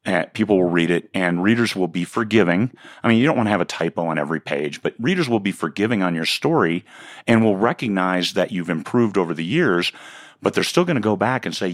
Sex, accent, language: male, American, English